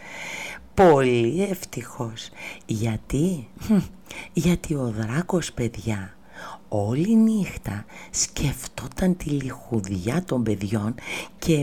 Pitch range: 120-200 Hz